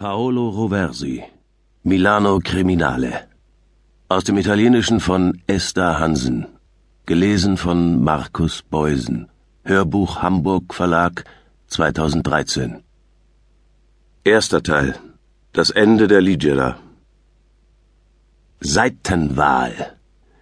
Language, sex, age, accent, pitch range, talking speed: German, male, 50-69, German, 90-115 Hz, 75 wpm